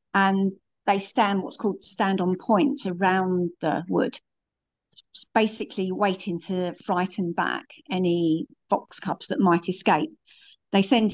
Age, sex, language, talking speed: 50-69, female, English, 130 wpm